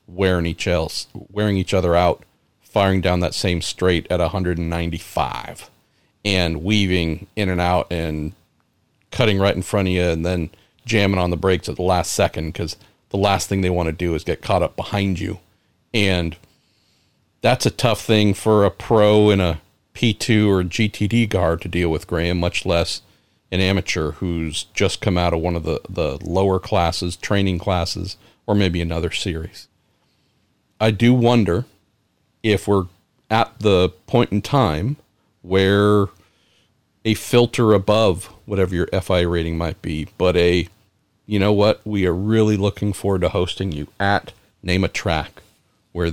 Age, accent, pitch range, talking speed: 40-59, American, 85-105 Hz, 165 wpm